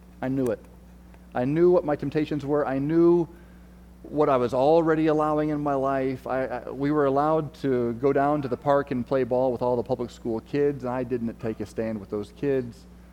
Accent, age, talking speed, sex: American, 40-59, 220 wpm, male